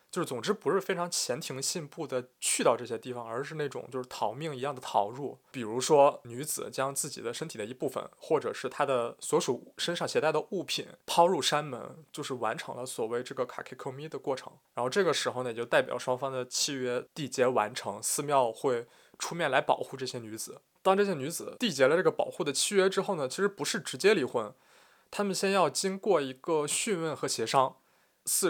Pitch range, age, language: 125-180 Hz, 20-39, Chinese